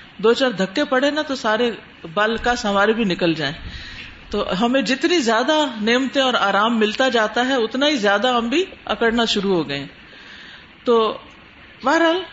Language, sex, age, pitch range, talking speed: Urdu, female, 50-69, 190-245 Hz, 165 wpm